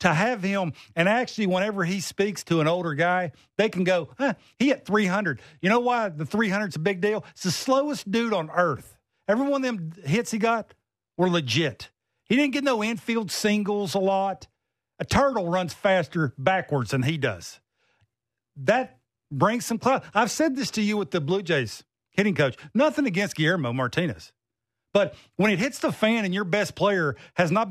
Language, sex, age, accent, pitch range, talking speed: English, male, 50-69, American, 160-225 Hz, 195 wpm